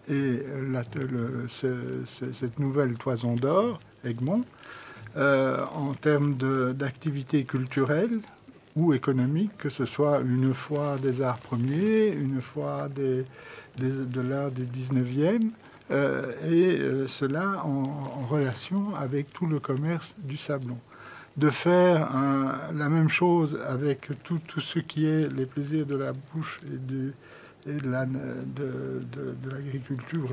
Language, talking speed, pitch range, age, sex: French, 135 wpm, 130-155 Hz, 60-79, male